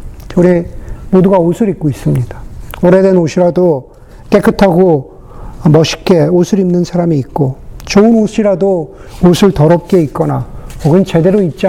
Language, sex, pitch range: Korean, male, 150-205 Hz